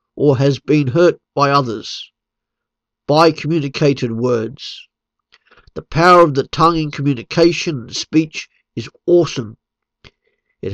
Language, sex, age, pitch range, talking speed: English, male, 50-69, 130-165 Hz, 115 wpm